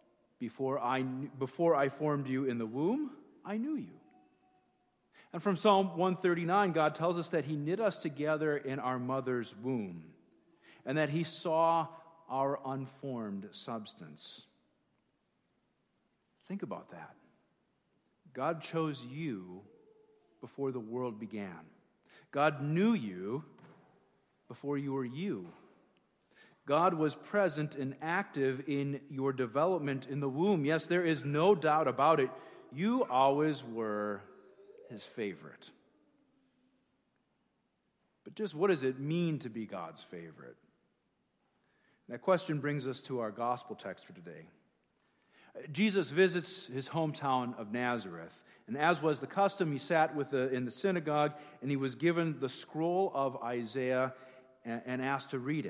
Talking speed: 135 wpm